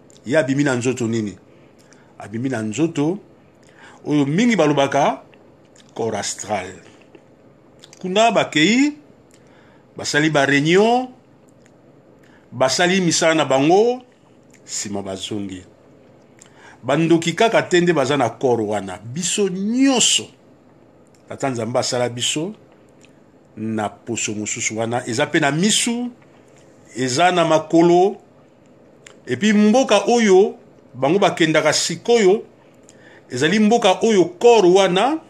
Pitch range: 125-200 Hz